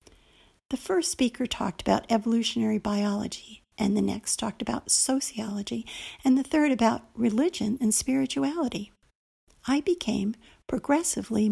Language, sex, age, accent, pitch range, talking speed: English, female, 60-79, American, 210-265 Hz, 120 wpm